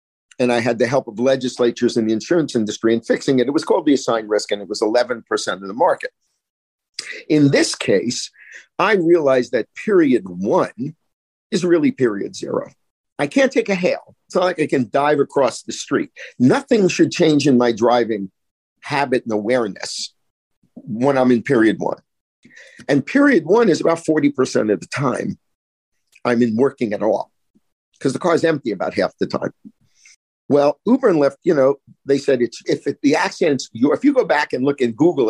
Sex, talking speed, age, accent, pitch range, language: male, 190 wpm, 50-69, American, 125-180 Hz, English